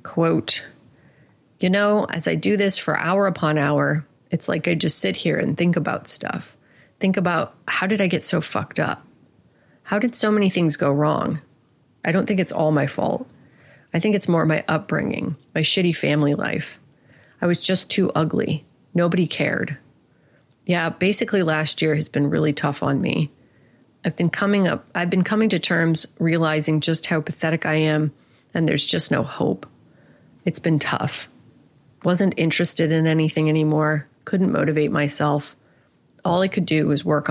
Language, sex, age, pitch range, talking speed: English, female, 30-49, 145-175 Hz, 175 wpm